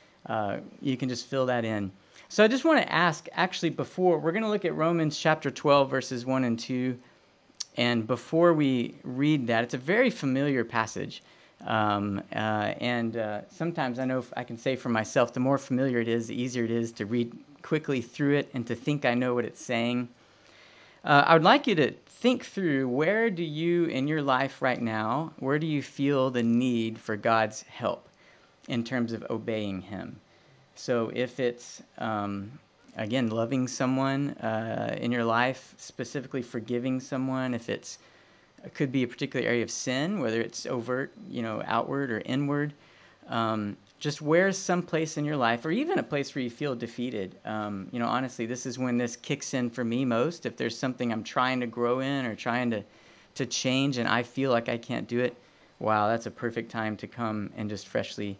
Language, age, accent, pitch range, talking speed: English, 40-59, American, 115-140 Hz, 200 wpm